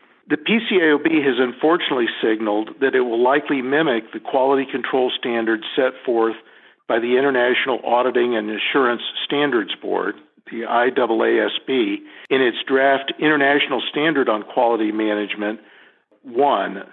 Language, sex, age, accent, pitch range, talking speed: English, male, 50-69, American, 115-140 Hz, 125 wpm